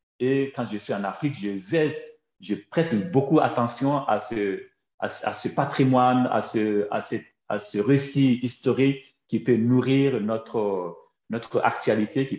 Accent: French